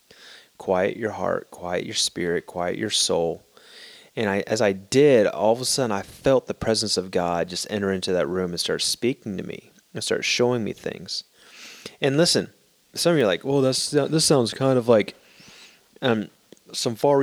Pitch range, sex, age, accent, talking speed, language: 105-140 Hz, male, 30-49, American, 195 wpm, English